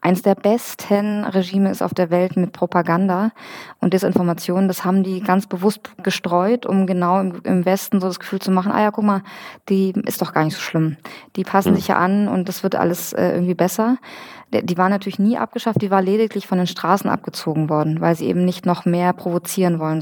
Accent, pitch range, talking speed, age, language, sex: German, 175-200 Hz, 210 wpm, 20-39, German, female